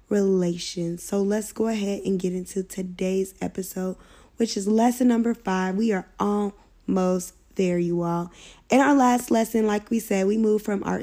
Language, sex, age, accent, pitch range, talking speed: English, female, 10-29, American, 185-230 Hz, 175 wpm